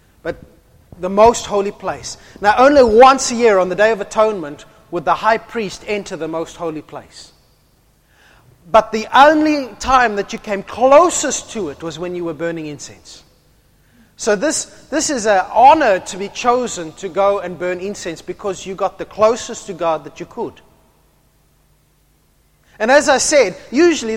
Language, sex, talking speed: English, male, 170 wpm